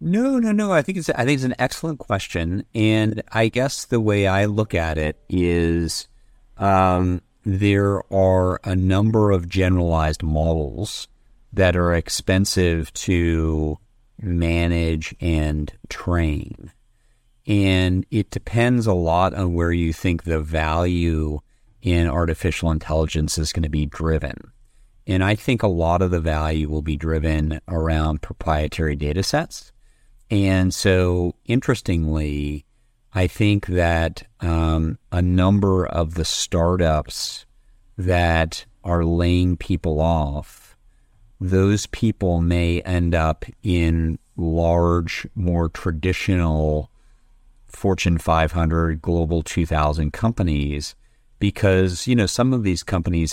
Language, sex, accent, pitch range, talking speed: German, male, American, 80-100 Hz, 125 wpm